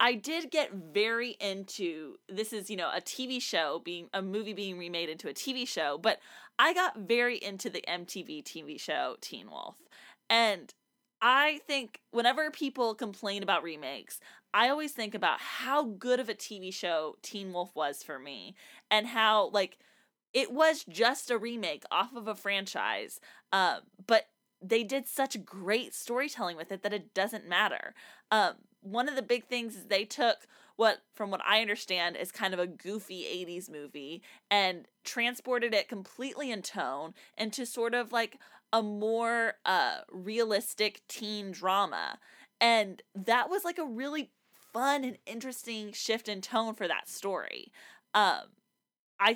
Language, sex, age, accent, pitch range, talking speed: English, female, 20-39, American, 195-240 Hz, 165 wpm